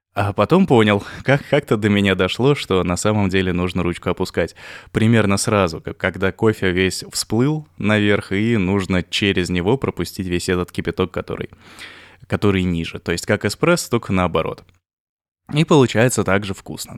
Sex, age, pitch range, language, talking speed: male, 20-39, 90-110 Hz, Russian, 150 wpm